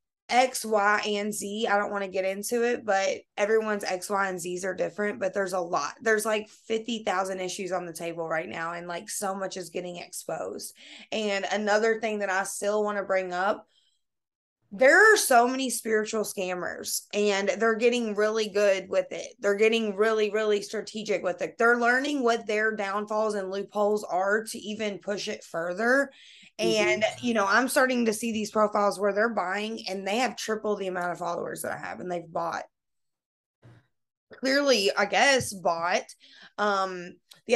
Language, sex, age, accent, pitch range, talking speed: English, female, 20-39, American, 190-225 Hz, 180 wpm